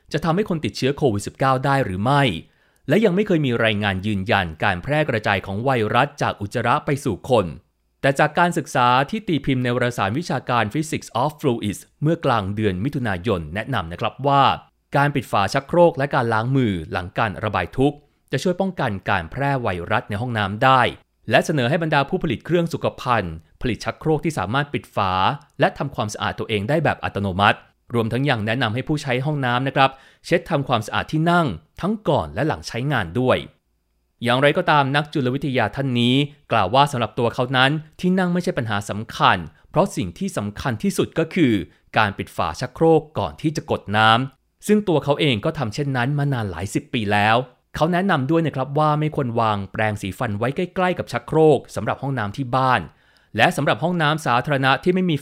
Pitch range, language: 110-150 Hz, Thai